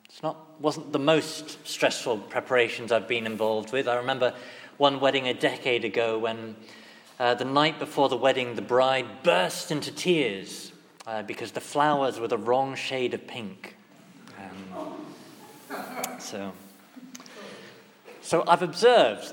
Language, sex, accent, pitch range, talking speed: English, male, British, 130-180 Hz, 135 wpm